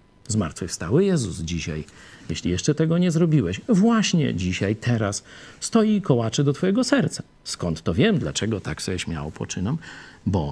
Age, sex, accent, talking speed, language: 50-69, male, native, 150 wpm, Polish